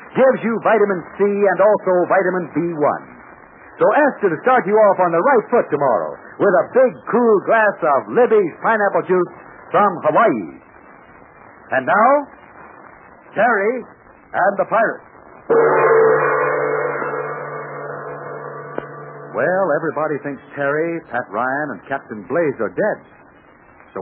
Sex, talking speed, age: male, 120 wpm, 60-79